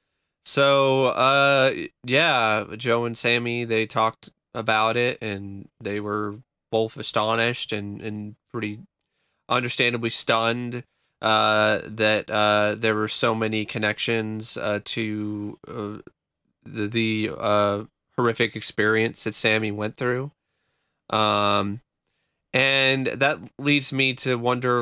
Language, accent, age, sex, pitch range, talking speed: English, American, 20-39, male, 105-125 Hz, 115 wpm